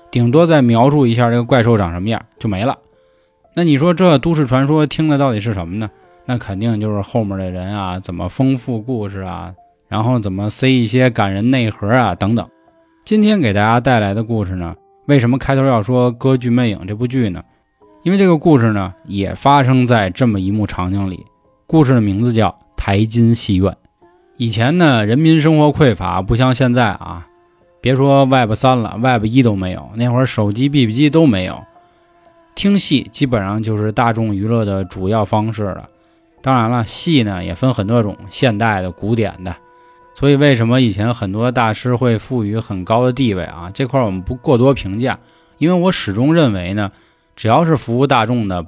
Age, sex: 20-39, male